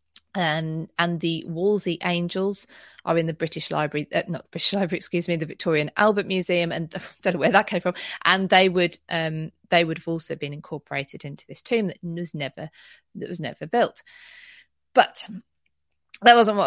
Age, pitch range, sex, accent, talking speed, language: 30-49, 155-200 Hz, female, British, 195 wpm, English